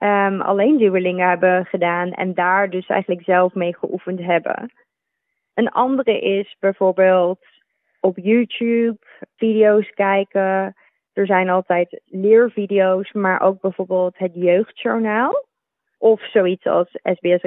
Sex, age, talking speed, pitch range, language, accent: female, 20-39, 115 wpm, 180-205 Hz, Dutch, Dutch